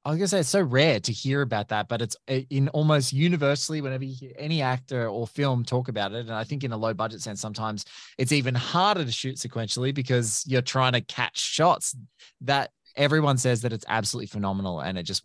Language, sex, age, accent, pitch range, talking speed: English, male, 20-39, Australian, 115-145 Hz, 230 wpm